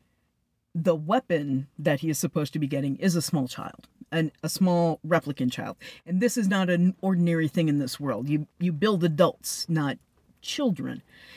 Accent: American